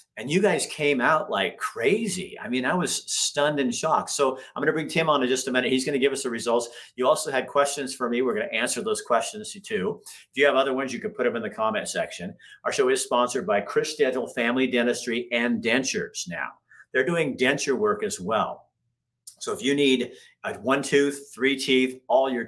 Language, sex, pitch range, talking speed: English, male, 125-205 Hz, 230 wpm